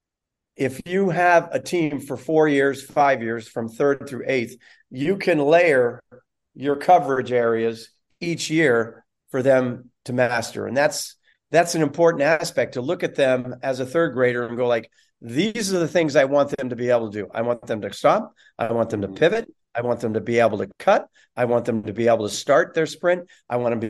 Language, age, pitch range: English, 40-59, 125-165 Hz